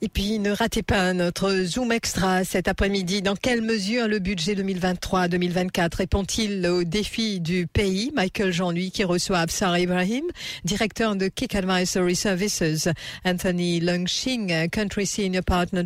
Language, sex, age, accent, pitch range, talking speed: English, female, 50-69, French, 180-215 Hz, 140 wpm